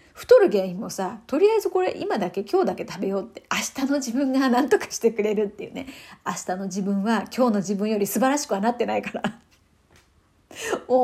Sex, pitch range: female, 200-280 Hz